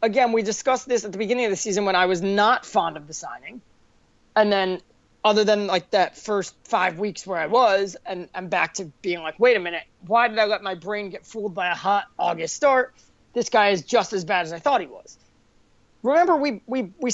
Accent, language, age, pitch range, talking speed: American, English, 30-49, 190-245 Hz, 235 wpm